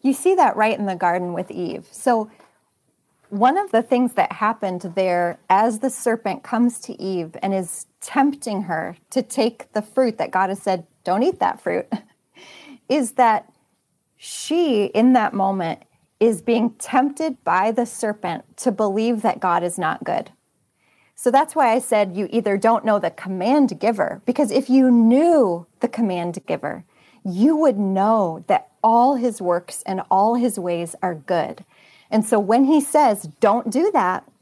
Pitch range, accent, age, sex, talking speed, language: 195-265 Hz, American, 30-49, female, 170 wpm, English